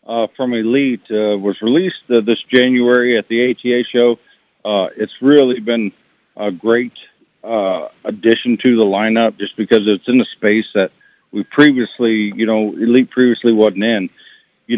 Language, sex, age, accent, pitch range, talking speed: English, male, 50-69, American, 100-120 Hz, 160 wpm